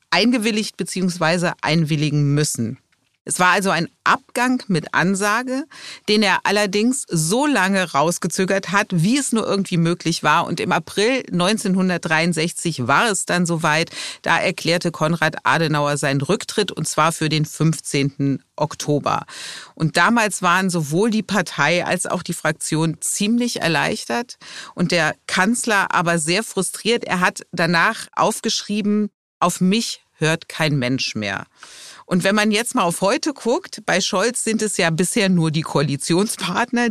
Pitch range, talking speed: 160-210 Hz, 145 wpm